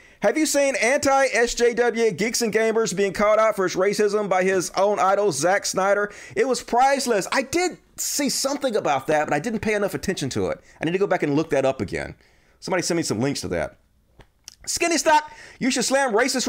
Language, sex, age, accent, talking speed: English, male, 40-59, American, 215 wpm